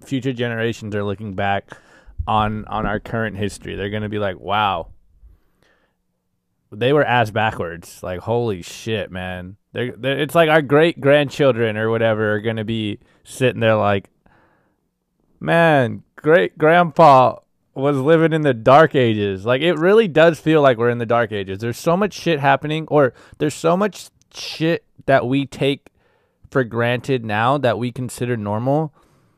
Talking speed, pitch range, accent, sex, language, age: 155 wpm, 110-145 Hz, American, male, English, 20-39